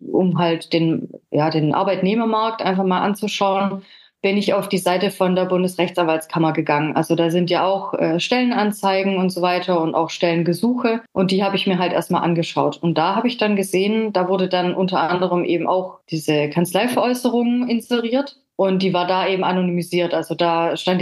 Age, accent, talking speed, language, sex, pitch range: 30-49, German, 185 wpm, German, female, 170-205 Hz